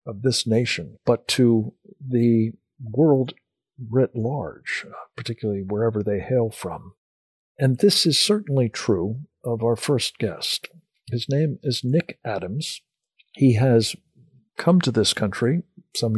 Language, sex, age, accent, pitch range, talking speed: English, male, 50-69, American, 110-140 Hz, 130 wpm